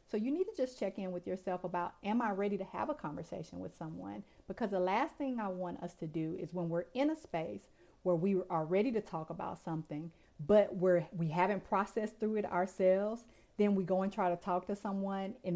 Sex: female